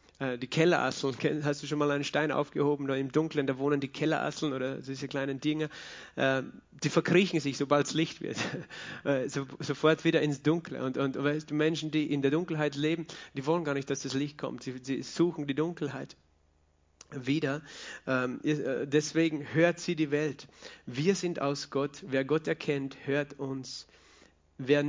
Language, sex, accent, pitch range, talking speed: German, male, German, 135-155 Hz, 170 wpm